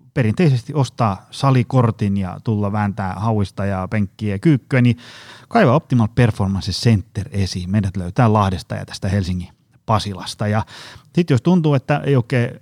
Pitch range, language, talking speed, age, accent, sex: 100-135 Hz, Finnish, 145 wpm, 30-49, native, male